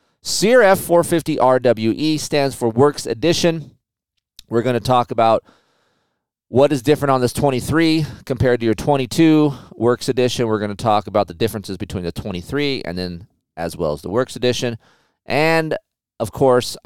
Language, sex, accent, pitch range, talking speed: English, male, American, 100-130 Hz, 155 wpm